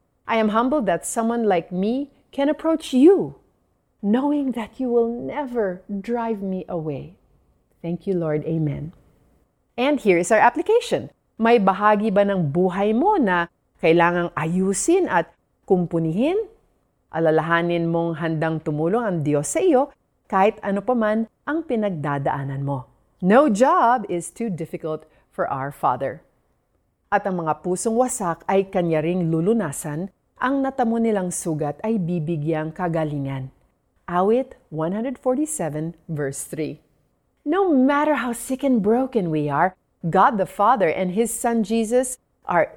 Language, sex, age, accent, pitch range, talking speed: Filipino, female, 40-59, native, 165-235 Hz, 135 wpm